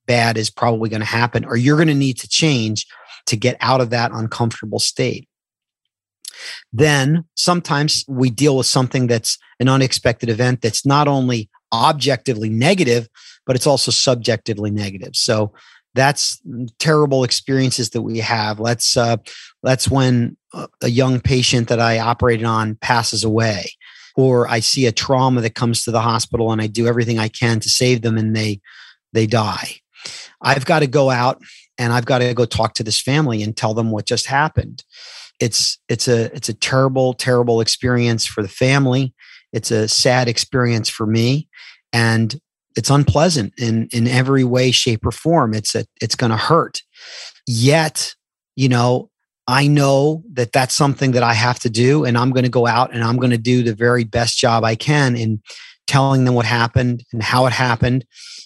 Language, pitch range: English, 115-130 Hz